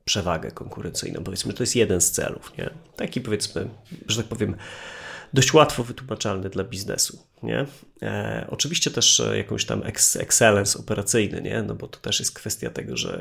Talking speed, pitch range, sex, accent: 170 wpm, 105-120 Hz, male, native